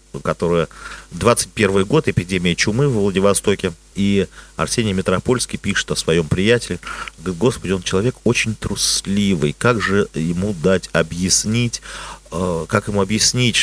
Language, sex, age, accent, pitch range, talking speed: Russian, male, 40-59, native, 95-120 Hz, 120 wpm